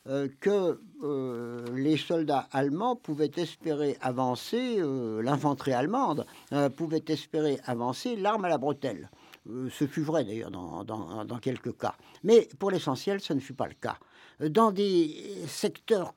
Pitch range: 130-185 Hz